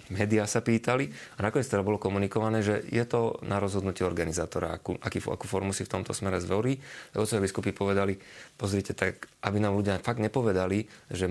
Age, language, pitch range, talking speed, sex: 30-49, Slovak, 100-110 Hz, 180 wpm, male